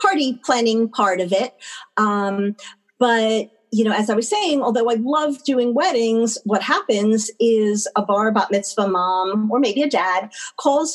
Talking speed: 170 wpm